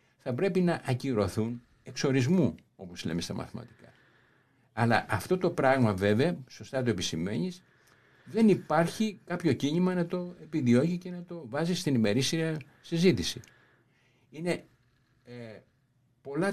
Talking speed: 125 wpm